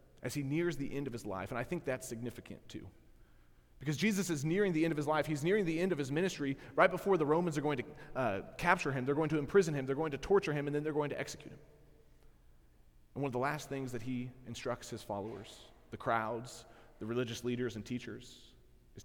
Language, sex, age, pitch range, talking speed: English, male, 30-49, 100-135 Hz, 240 wpm